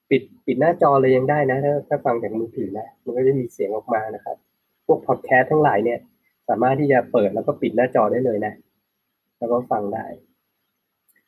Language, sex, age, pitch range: Thai, male, 20-39, 120-140 Hz